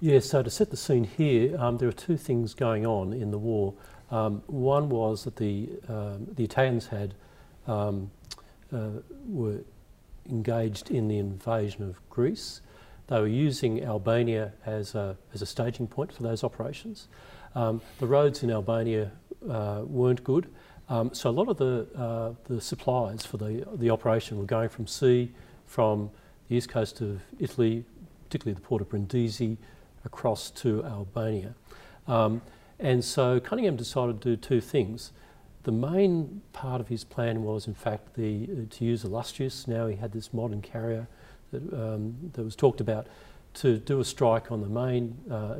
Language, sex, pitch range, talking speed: English, male, 110-125 Hz, 170 wpm